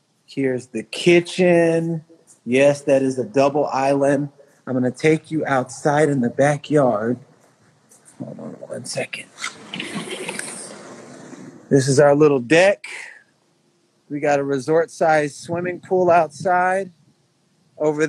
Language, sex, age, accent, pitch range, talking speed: English, male, 30-49, American, 140-170 Hz, 115 wpm